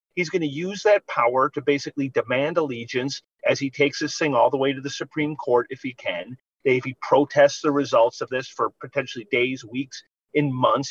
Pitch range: 135-180 Hz